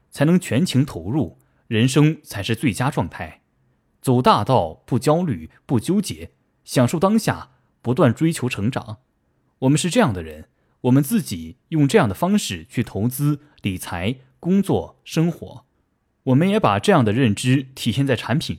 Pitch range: 105-150 Hz